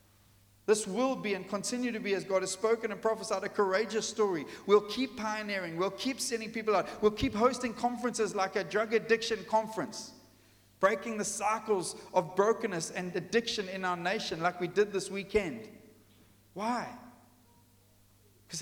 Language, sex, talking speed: English, male, 160 wpm